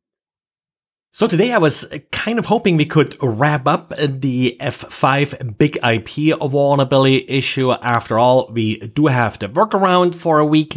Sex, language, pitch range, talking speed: male, English, 130-165 Hz, 150 wpm